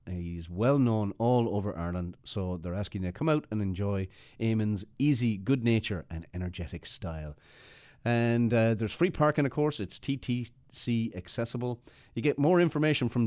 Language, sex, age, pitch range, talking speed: English, male, 30-49, 90-120 Hz, 165 wpm